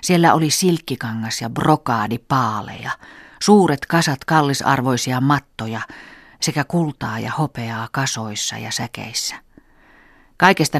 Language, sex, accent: Finnish, female, native